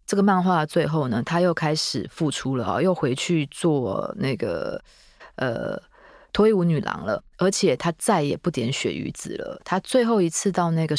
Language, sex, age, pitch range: Chinese, female, 20-39, 150-195 Hz